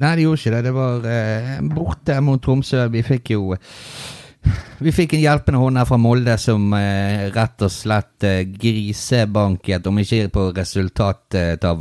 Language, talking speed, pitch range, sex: English, 170 wpm, 90-120 Hz, male